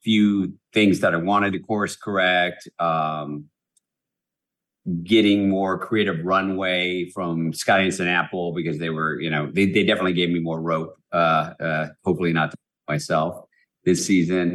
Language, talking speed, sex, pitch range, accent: English, 155 wpm, male, 85-105 Hz, American